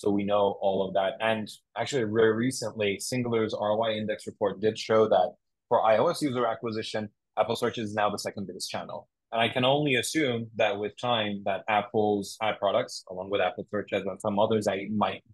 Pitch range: 100-115 Hz